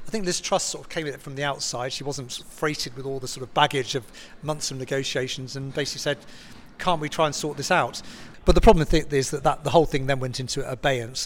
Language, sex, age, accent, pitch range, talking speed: English, male, 40-59, British, 125-150 Hz, 255 wpm